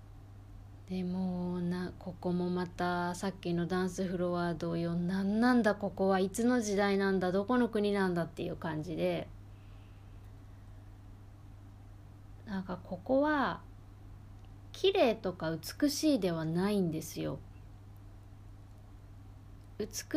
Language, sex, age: Japanese, female, 20-39